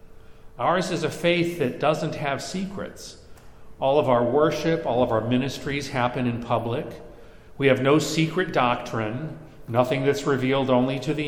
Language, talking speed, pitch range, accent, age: English, 160 wpm, 115-155 Hz, American, 50-69